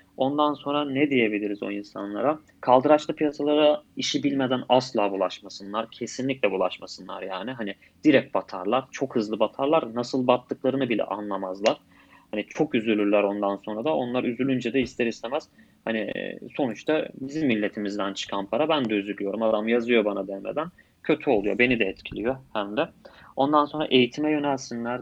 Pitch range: 110-130 Hz